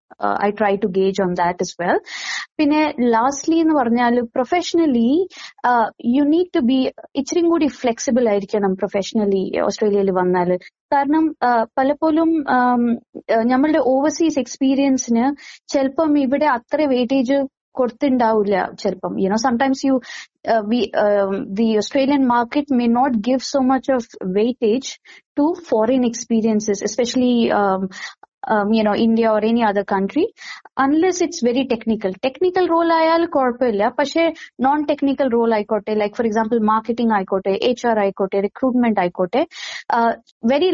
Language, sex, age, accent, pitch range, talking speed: Malayalam, female, 20-39, native, 220-285 Hz, 145 wpm